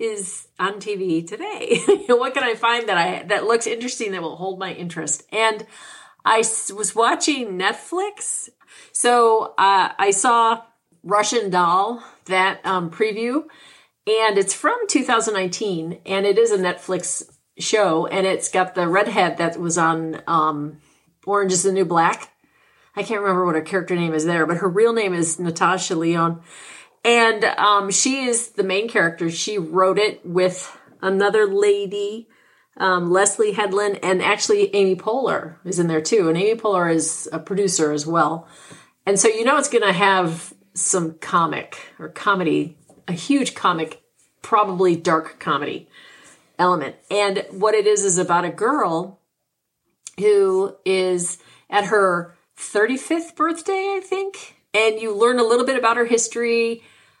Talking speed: 155 wpm